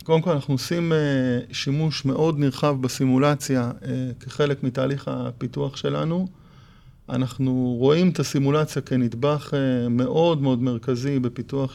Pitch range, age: 130-155 Hz, 30-49